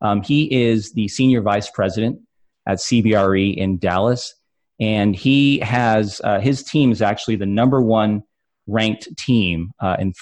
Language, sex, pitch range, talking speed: English, male, 90-110 Hz, 155 wpm